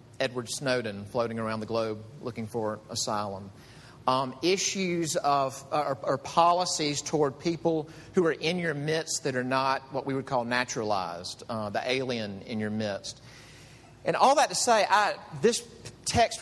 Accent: American